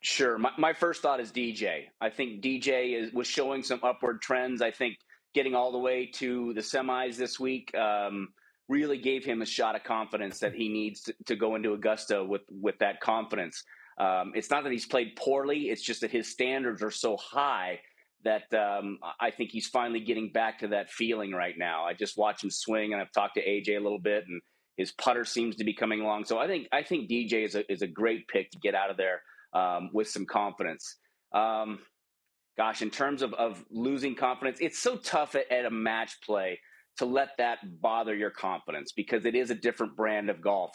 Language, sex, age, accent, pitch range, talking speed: English, male, 30-49, American, 110-125 Hz, 215 wpm